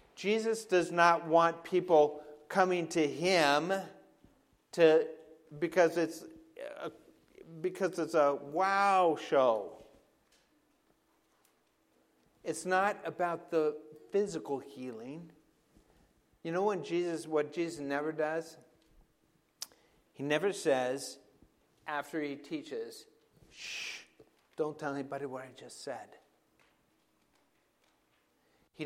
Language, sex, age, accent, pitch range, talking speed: English, male, 50-69, American, 155-195 Hz, 95 wpm